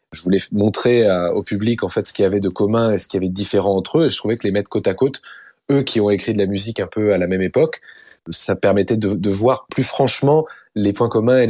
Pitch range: 95-120 Hz